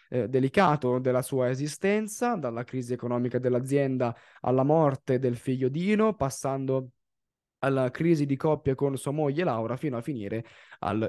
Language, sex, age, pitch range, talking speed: Italian, male, 20-39, 120-150 Hz, 145 wpm